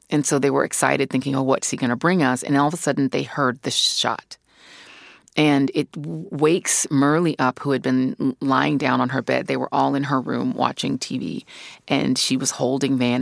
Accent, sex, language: American, female, English